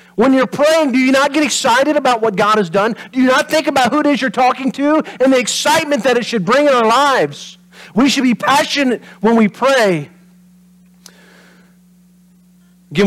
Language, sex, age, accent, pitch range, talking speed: English, male, 40-59, American, 165-195 Hz, 195 wpm